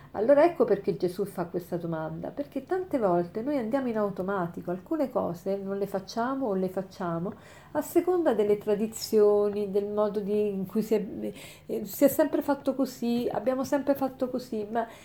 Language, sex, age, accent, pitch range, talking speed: Italian, female, 50-69, native, 185-260 Hz, 165 wpm